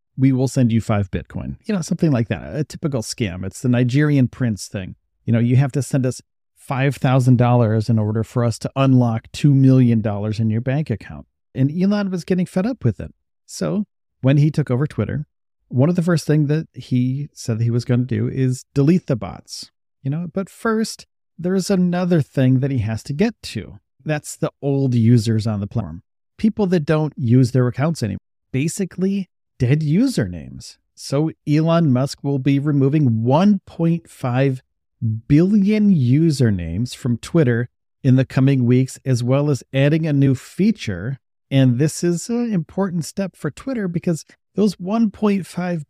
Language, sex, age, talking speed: English, male, 40-59, 175 wpm